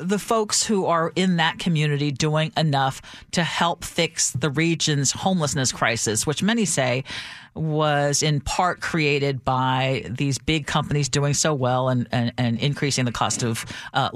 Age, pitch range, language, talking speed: 40-59, 130-165 Hz, English, 160 wpm